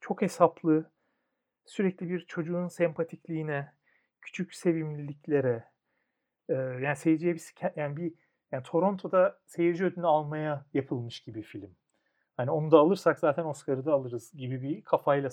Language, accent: Turkish, native